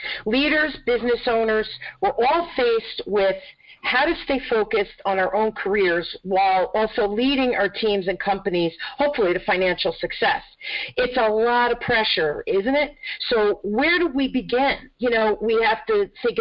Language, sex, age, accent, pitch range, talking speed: English, female, 50-69, American, 185-255 Hz, 160 wpm